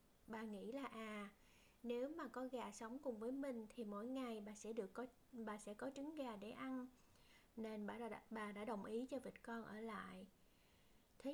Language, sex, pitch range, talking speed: Vietnamese, female, 220-265 Hz, 205 wpm